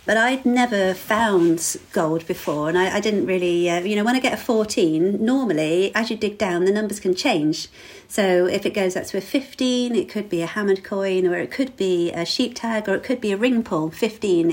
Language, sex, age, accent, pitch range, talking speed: English, female, 40-59, British, 175-235 Hz, 235 wpm